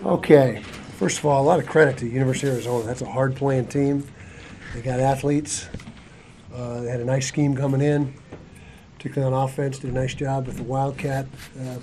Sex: male